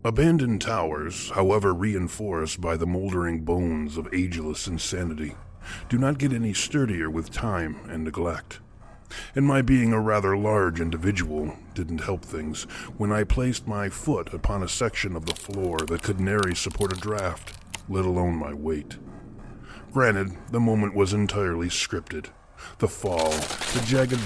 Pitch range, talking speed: 85-110 Hz, 150 wpm